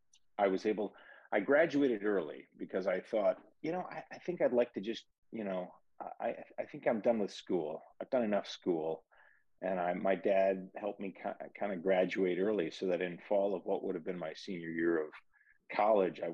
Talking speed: 205 wpm